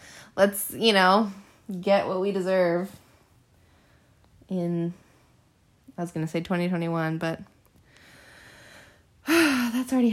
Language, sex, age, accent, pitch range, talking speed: English, female, 20-39, American, 170-225 Hz, 100 wpm